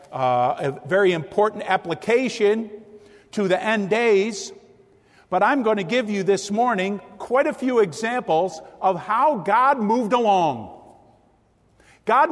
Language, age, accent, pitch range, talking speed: English, 50-69, American, 215-295 Hz, 130 wpm